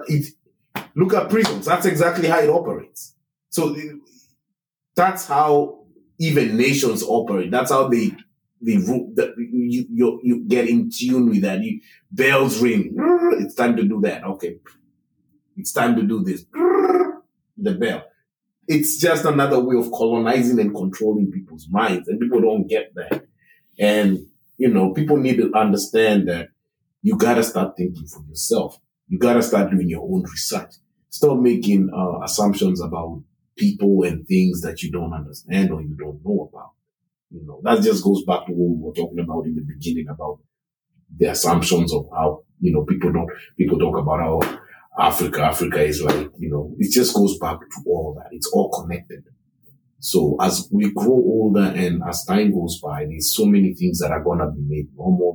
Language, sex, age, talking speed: English, male, 30-49, 175 wpm